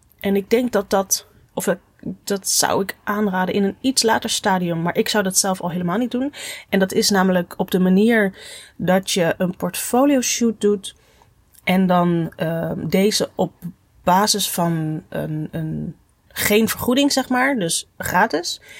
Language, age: Dutch, 30-49